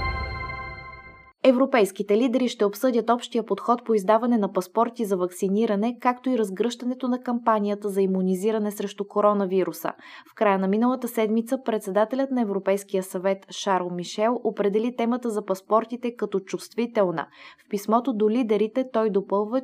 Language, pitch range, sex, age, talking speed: Bulgarian, 195-240 Hz, female, 20-39, 135 wpm